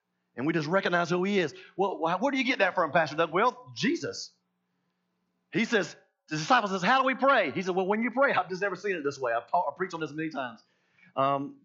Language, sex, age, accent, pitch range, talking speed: English, male, 40-59, American, 140-225 Hz, 240 wpm